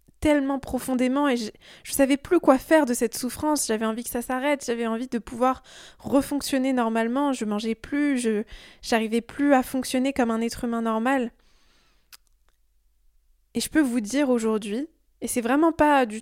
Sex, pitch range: female, 230-270 Hz